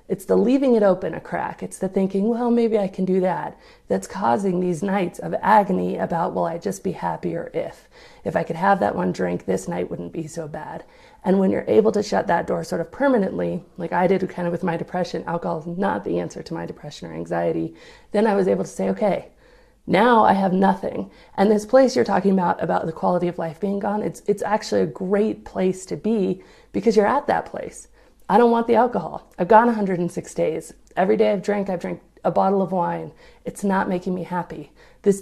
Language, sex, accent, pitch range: English, female, American, 170-210 Hz